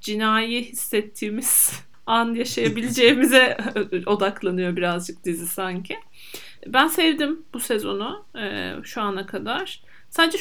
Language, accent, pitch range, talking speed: Turkish, native, 195-260 Hz, 90 wpm